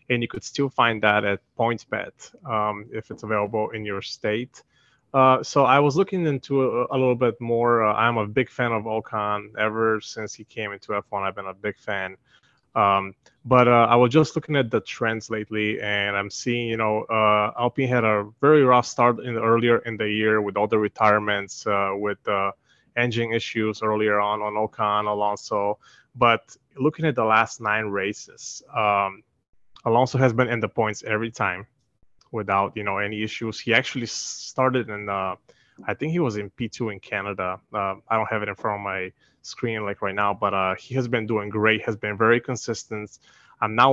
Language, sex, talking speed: English, male, 200 wpm